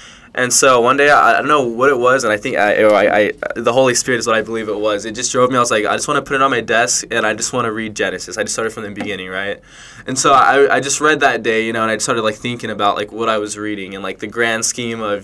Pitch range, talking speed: 105-120 Hz, 330 wpm